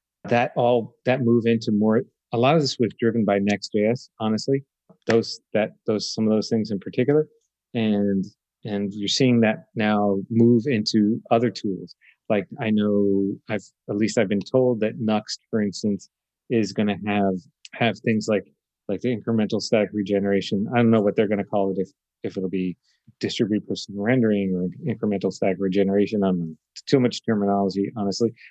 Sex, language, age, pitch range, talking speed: male, English, 30-49, 100-115 Hz, 175 wpm